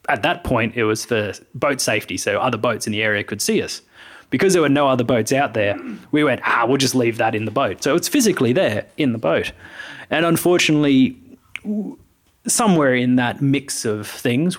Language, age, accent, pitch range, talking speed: English, 20-39, Australian, 115-145 Hz, 205 wpm